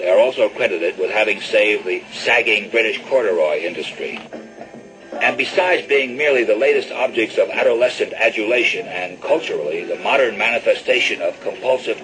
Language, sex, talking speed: English, male, 145 wpm